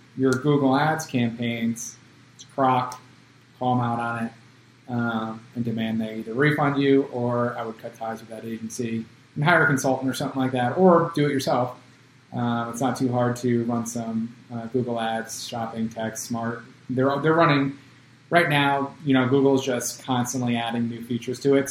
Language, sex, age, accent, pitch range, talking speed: English, male, 30-49, American, 120-135 Hz, 190 wpm